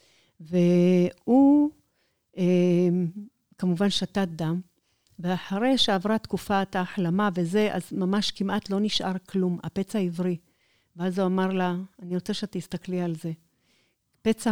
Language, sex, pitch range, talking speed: Hebrew, female, 175-200 Hz, 110 wpm